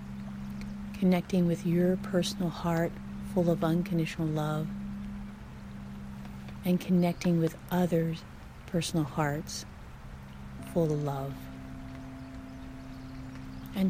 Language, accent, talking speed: English, American, 80 wpm